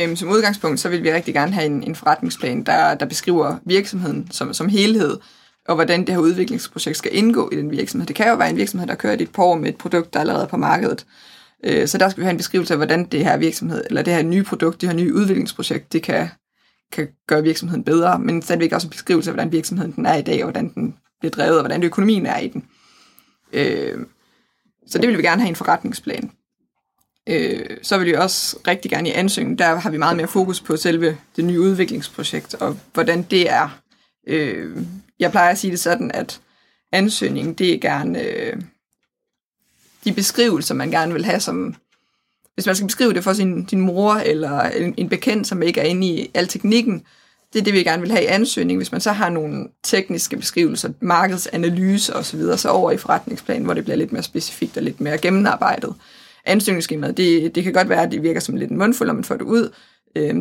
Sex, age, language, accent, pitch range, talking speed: female, 20-39, Danish, native, 170-210 Hz, 215 wpm